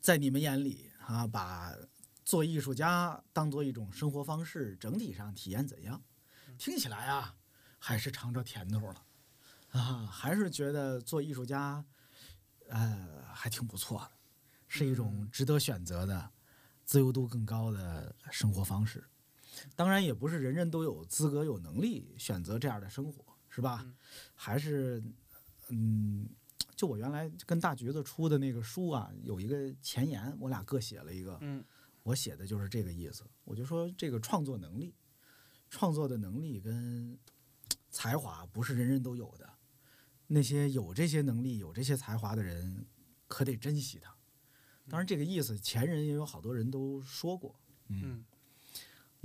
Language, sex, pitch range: Chinese, male, 110-145 Hz